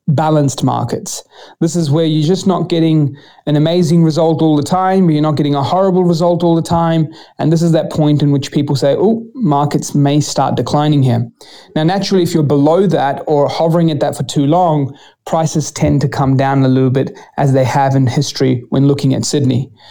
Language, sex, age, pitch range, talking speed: English, male, 30-49, 135-160 Hz, 210 wpm